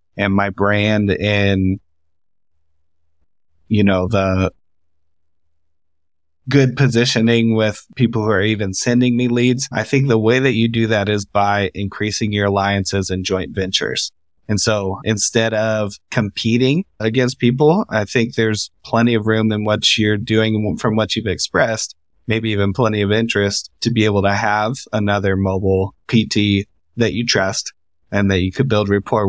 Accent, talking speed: American, 155 wpm